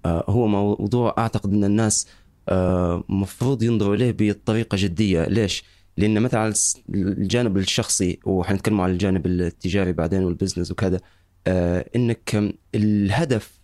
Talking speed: 105 wpm